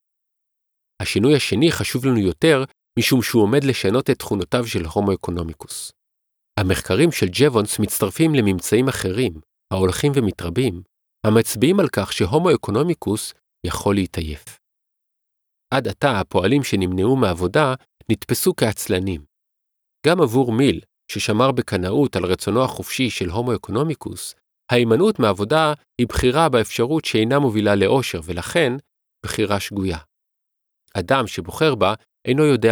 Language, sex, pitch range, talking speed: Hebrew, male, 95-130 Hz, 110 wpm